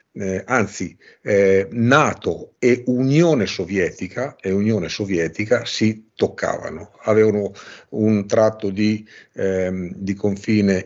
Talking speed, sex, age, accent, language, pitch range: 105 wpm, male, 50-69, native, Italian, 95-125 Hz